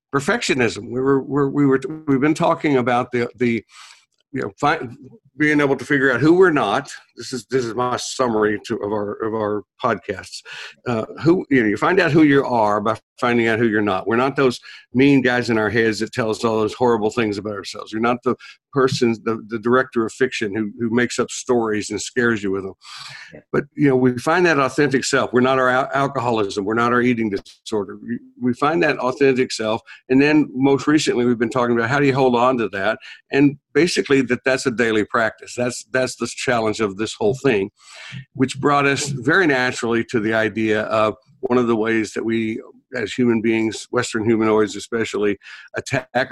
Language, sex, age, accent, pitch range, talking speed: English, male, 60-79, American, 110-130 Hz, 210 wpm